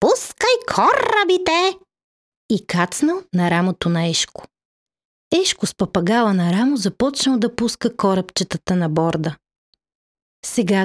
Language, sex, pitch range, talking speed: Bulgarian, female, 180-250 Hz, 110 wpm